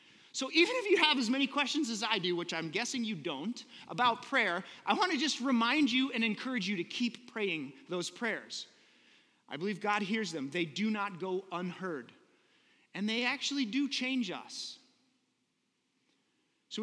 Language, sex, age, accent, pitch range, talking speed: English, male, 30-49, American, 175-275 Hz, 175 wpm